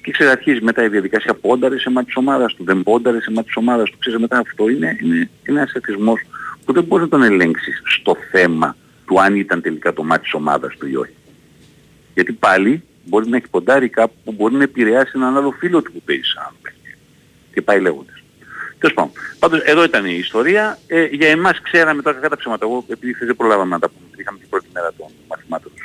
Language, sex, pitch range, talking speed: Greek, male, 105-145 Hz, 210 wpm